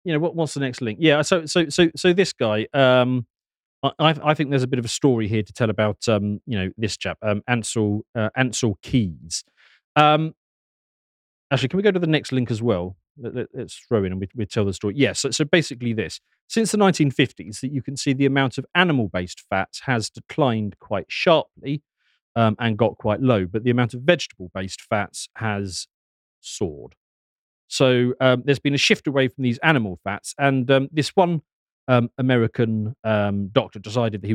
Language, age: English, 40-59